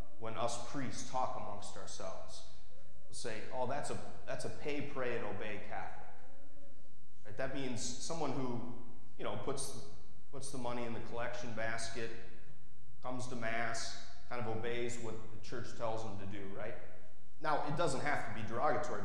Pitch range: 115-140 Hz